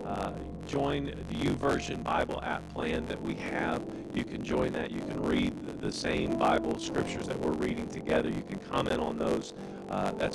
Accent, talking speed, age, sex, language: American, 185 wpm, 50-69, male, English